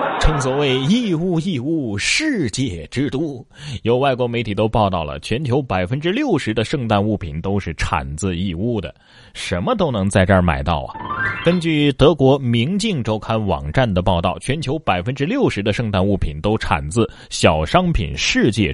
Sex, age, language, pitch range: male, 30-49, Chinese, 100-150 Hz